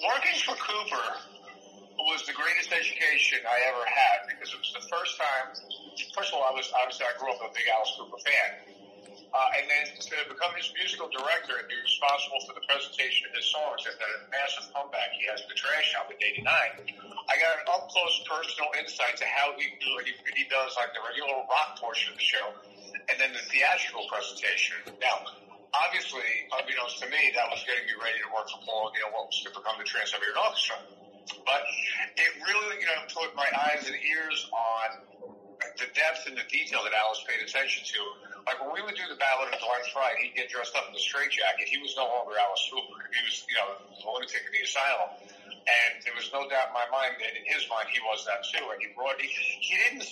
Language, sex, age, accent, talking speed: English, male, 50-69, American, 225 wpm